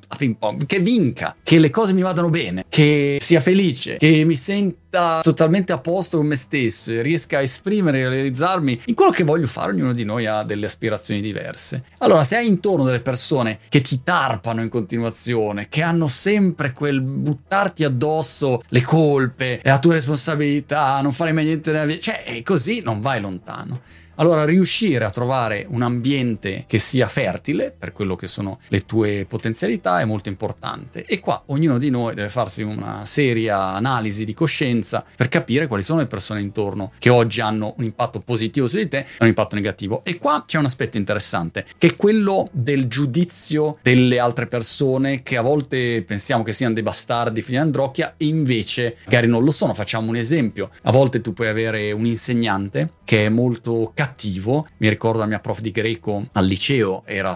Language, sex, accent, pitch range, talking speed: Italian, male, native, 110-150 Hz, 185 wpm